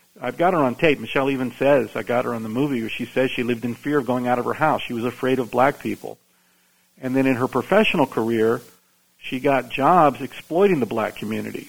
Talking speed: 235 wpm